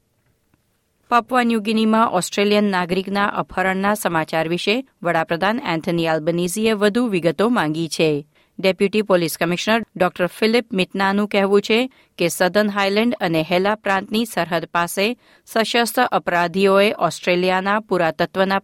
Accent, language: native, Gujarati